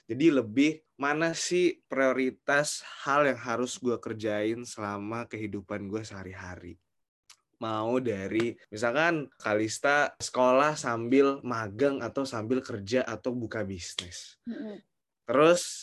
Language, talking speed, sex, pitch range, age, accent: Indonesian, 105 wpm, male, 110-150 Hz, 20-39, native